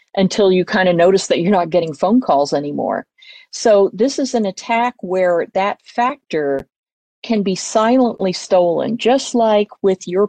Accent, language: American, English